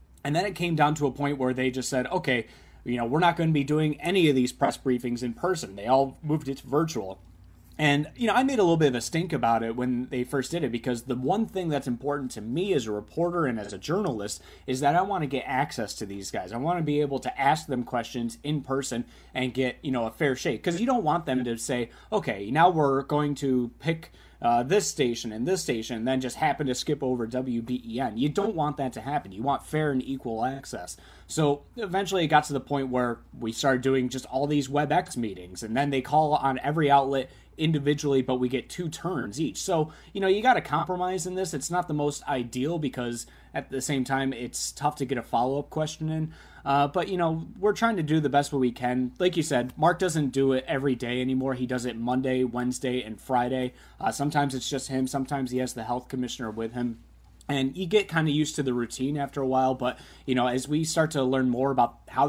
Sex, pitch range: male, 125-150 Hz